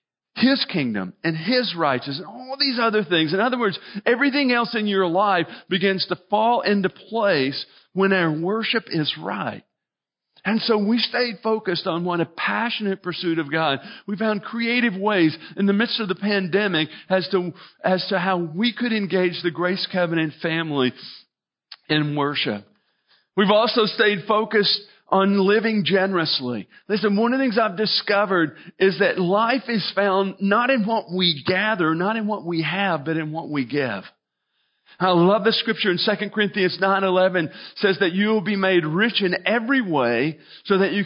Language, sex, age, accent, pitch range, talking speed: English, male, 50-69, American, 170-215 Hz, 170 wpm